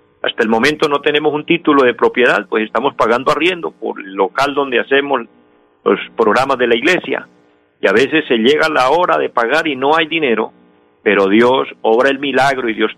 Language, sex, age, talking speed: Spanish, male, 50-69, 200 wpm